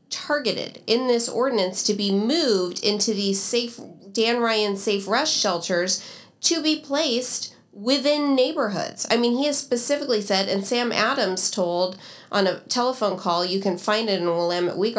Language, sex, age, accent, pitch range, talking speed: English, female, 30-49, American, 185-235 Hz, 170 wpm